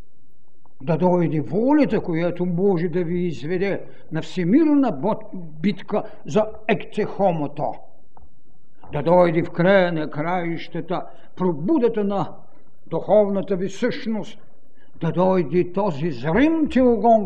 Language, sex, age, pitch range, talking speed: Bulgarian, male, 60-79, 170-210 Hz, 100 wpm